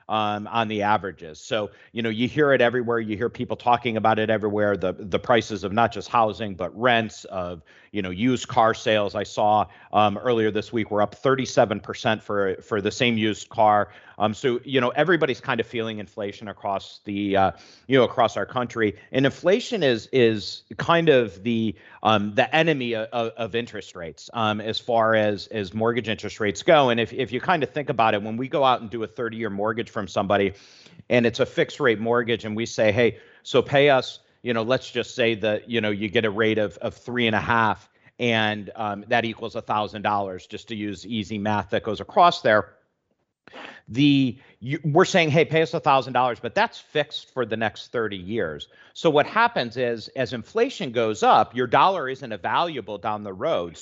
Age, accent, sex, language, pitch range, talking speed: 40-59, American, male, English, 105-125 Hz, 210 wpm